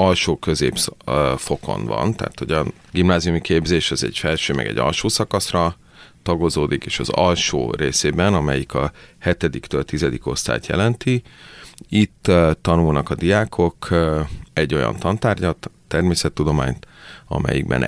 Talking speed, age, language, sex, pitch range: 115 wpm, 30-49, Hungarian, male, 70-90 Hz